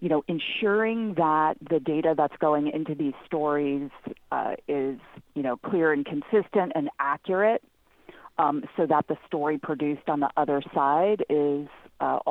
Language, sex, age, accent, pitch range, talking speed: English, female, 40-59, American, 145-185 Hz, 155 wpm